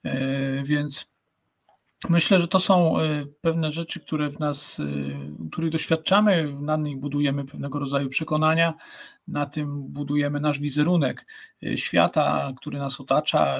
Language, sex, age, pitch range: Polish, male, 50-69, 140-170 Hz